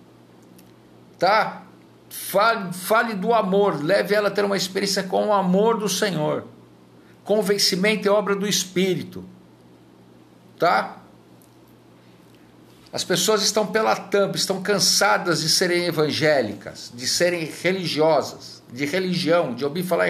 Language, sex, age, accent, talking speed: Portuguese, male, 60-79, Brazilian, 120 wpm